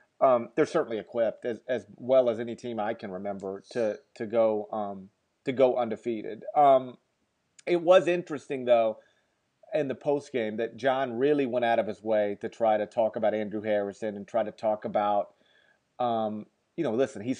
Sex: male